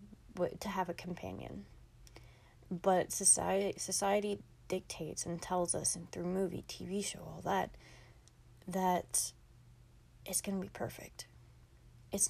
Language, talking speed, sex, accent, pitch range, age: English, 120 wpm, female, American, 165-200 Hz, 20-39